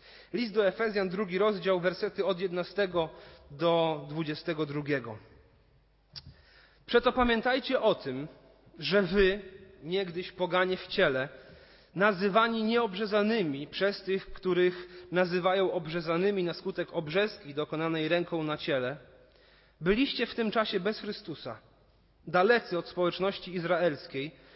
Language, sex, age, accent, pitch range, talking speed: Polish, male, 30-49, native, 165-210 Hz, 110 wpm